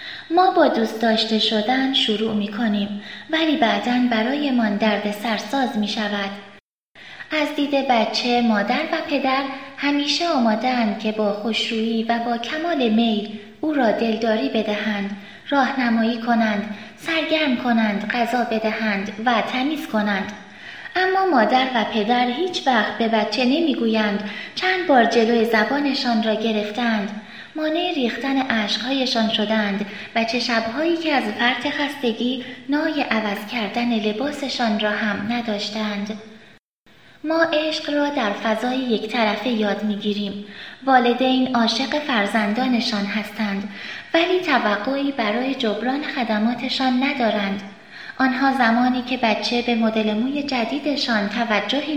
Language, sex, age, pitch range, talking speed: Persian, female, 20-39, 215-265 Hz, 120 wpm